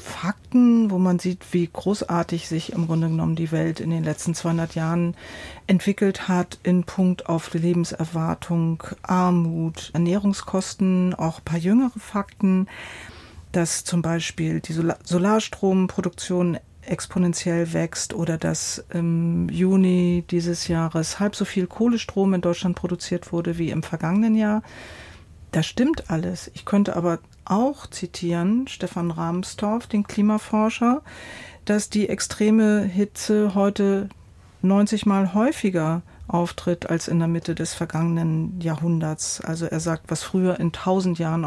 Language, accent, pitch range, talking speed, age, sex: German, German, 165-195 Hz, 135 wpm, 40-59, female